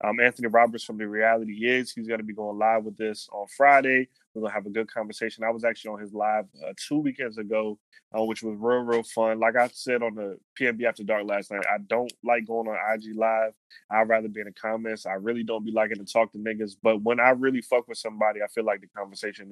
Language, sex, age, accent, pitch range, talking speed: English, male, 20-39, American, 105-120 Hz, 260 wpm